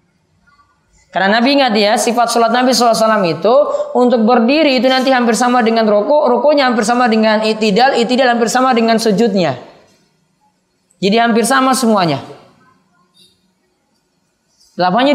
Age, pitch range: 20-39, 175-240 Hz